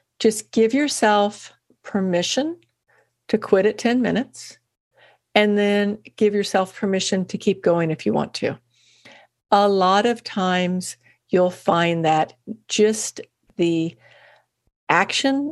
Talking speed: 120 wpm